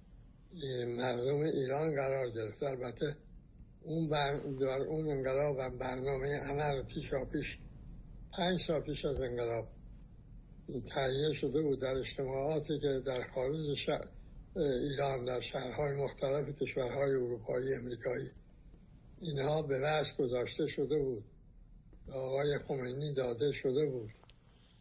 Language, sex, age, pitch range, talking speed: Persian, male, 60-79, 130-155 Hz, 110 wpm